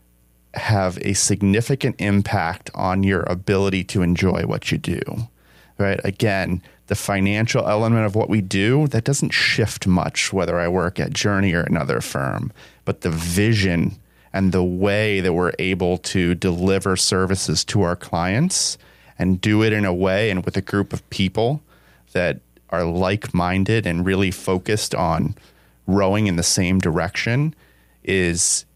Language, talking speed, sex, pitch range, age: English, 150 wpm, male, 90-105 Hz, 30-49